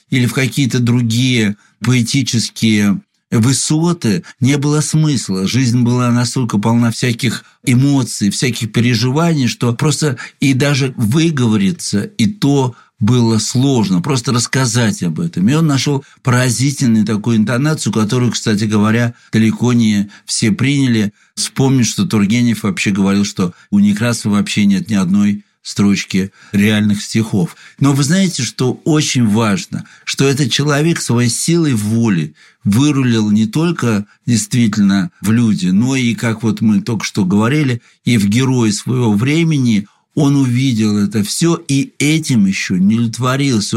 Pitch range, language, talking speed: 110-145 Hz, Russian, 135 wpm